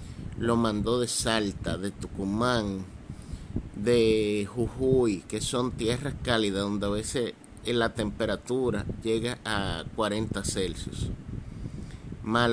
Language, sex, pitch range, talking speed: Spanish, male, 105-125 Hz, 105 wpm